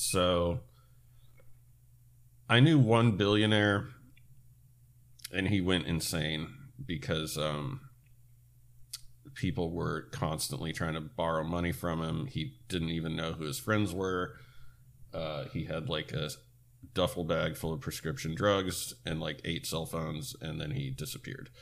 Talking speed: 135 wpm